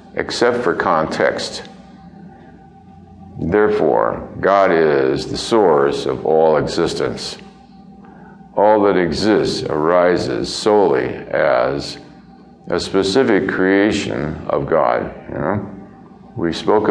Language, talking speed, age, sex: English, 85 wpm, 60-79, male